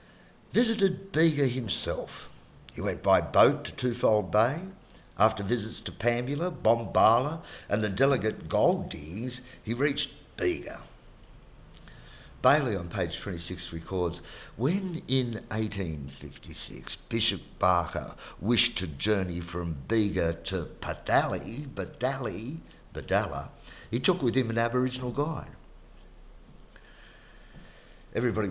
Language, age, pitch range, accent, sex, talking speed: English, 50-69, 85-115 Hz, Australian, male, 105 wpm